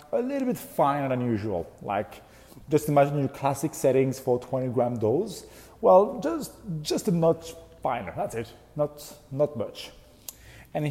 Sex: male